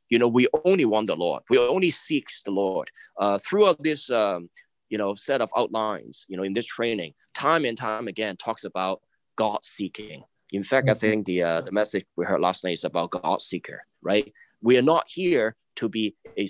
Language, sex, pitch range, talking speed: English, male, 100-140 Hz, 205 wpm